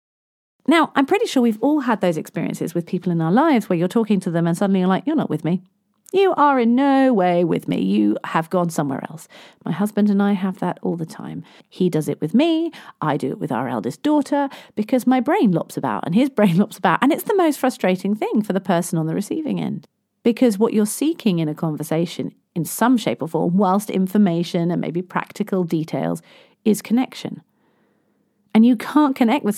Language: English